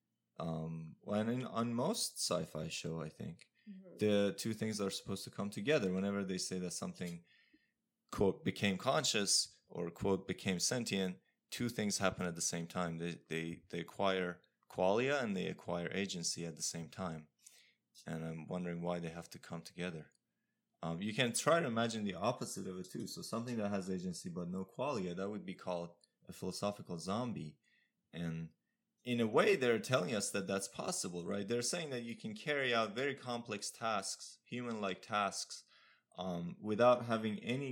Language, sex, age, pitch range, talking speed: English, male, 20-39, 90-115 Hz, 175 wpm